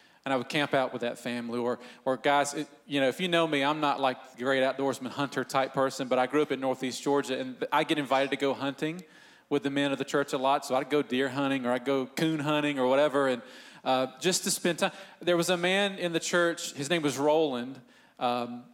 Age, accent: 40-59, American